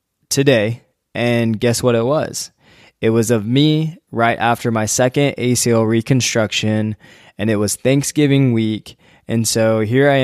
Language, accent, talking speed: English, American, 145 wpm